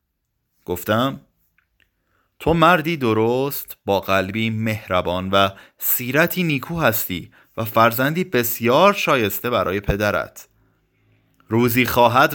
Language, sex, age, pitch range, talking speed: Persian, male, 30-49, 105-140 Hz, 90 wpm